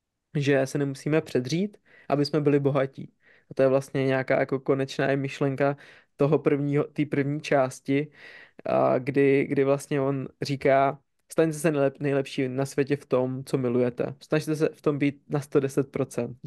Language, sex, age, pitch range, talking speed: Czech, male, 20-39, 135-150 Hz, 155 wpm